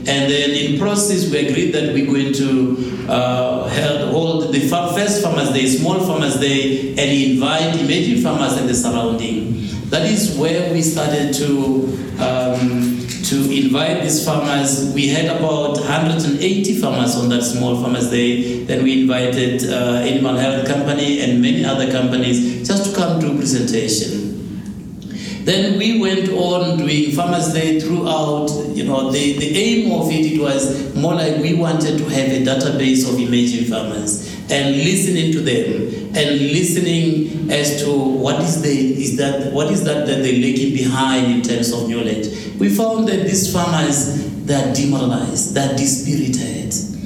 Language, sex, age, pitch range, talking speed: English, male, 60-79, 130-165 Hz, 160 wpm